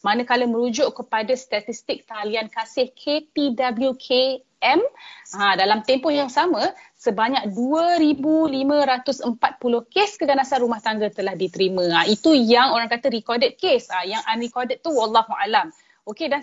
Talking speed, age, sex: 130 wpm, 30-49, female